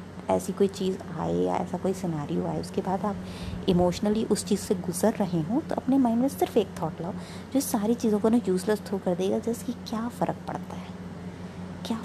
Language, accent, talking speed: Hindi, native, 210 wpm